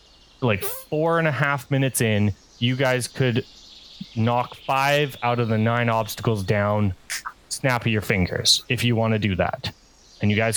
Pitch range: 100-120 Hz